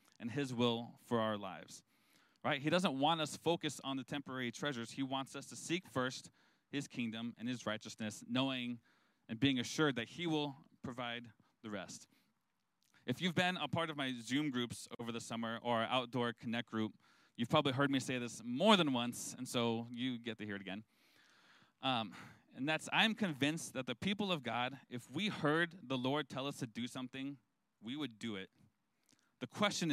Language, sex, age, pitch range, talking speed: English, male, 20-39, 115-150 Hz, 195 wpm